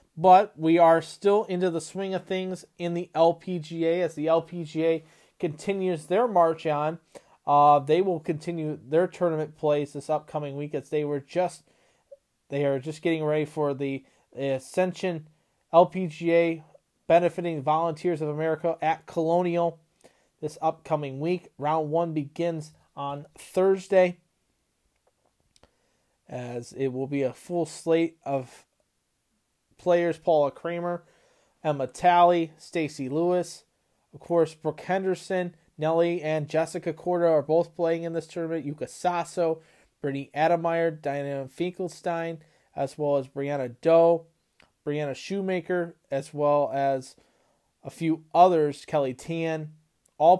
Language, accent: English, American